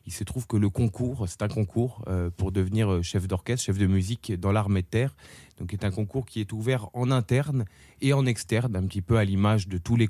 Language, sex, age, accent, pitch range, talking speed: French, male, 30-49, French, 95-115 Hz, 240 wpm